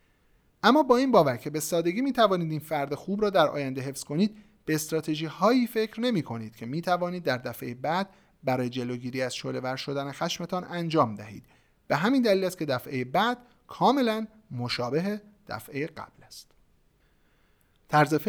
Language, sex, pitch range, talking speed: Persian, male, 130-175 Hz, 165 wpm